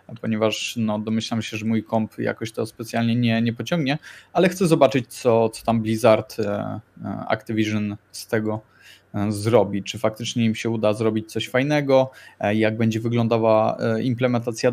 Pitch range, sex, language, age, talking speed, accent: 110-120 Hz, male, Polish, 20-39, 145 wpm, native